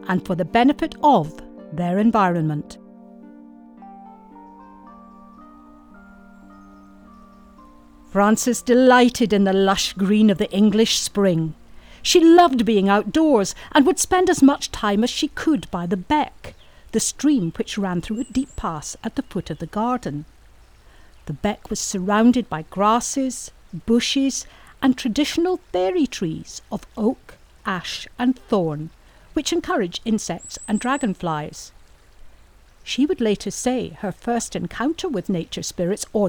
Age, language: 50-69, English